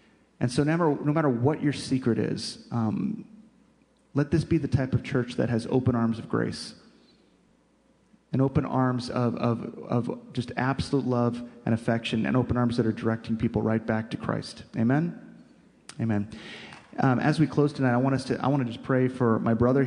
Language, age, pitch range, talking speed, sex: English, 30-49, 120-140 Hz, 195 wpm, male